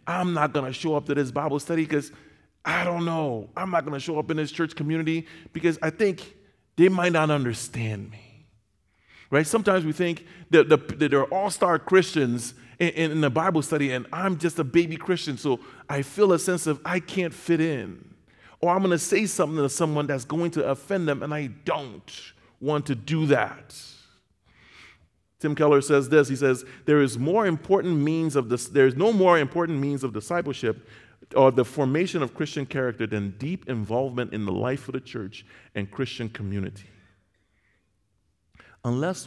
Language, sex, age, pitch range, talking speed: English, male, 30-49, 110-160 Hz, 185 wpm